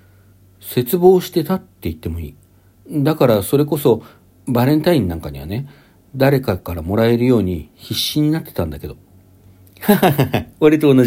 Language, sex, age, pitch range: Japanese, male, 60-79, 90-130 Hz